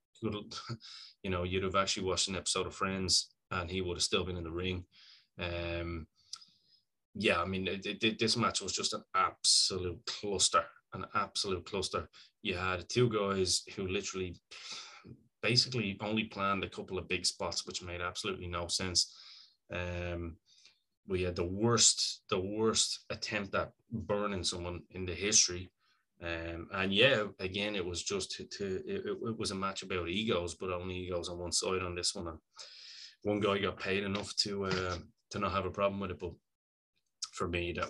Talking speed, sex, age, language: 175 wpm, male, 20-39, English